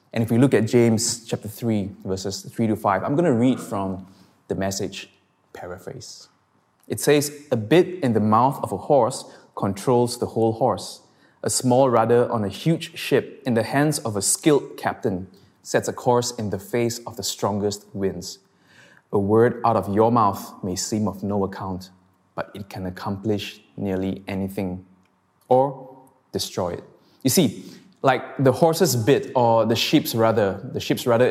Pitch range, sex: 100-130 Hz, male